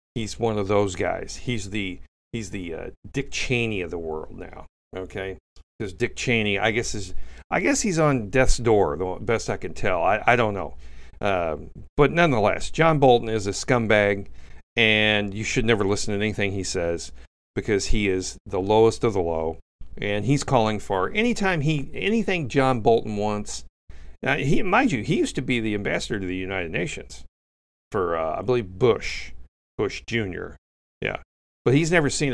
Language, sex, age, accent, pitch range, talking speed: English, male, 50-69, American, 80-130 Hz, 185 wpm